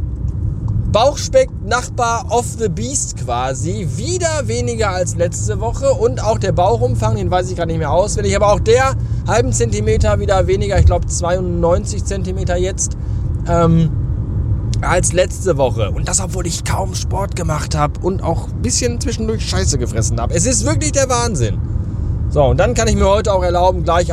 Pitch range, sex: 100-115 Hz, male